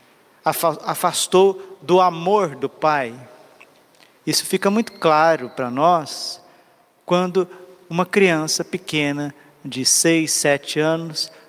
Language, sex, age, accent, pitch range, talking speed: Portuguese, male, 50-69, Brazilian, 160-200 Hz, 100 wpm